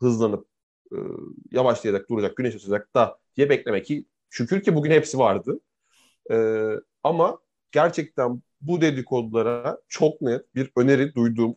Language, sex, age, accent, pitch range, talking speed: Turkish, male, 30-49, native, 120-160 Hz, 130 wpm